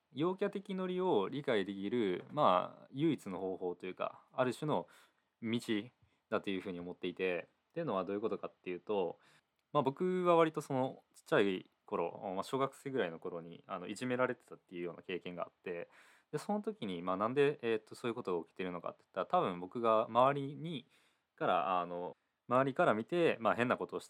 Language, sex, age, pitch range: Japanese, male, 20-39, 95-145 Hz